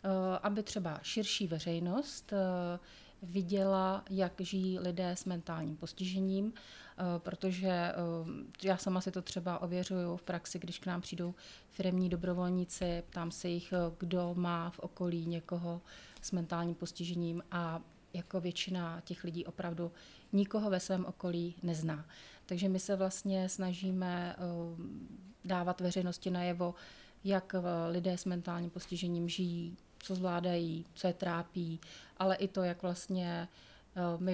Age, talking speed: 30-49, 130 wpm